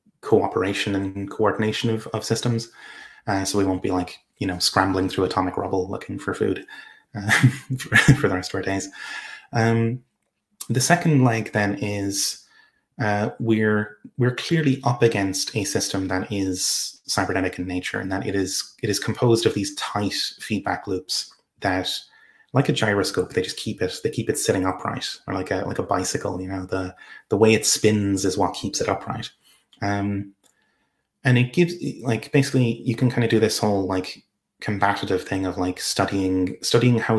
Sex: male